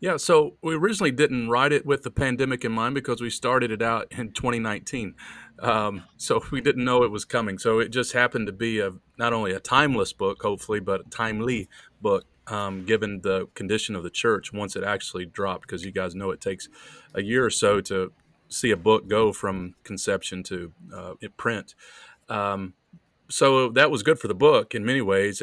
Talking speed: 205 wpm